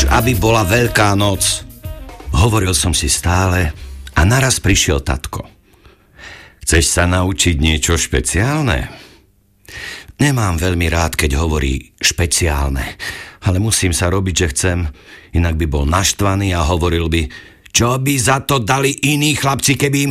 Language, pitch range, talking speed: Slovak, 85-130 Hz, 135 wpm